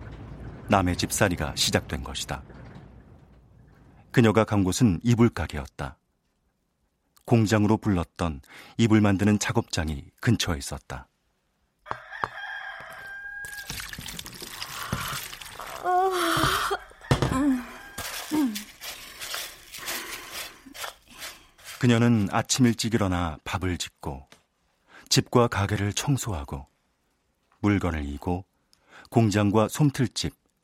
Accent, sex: native, male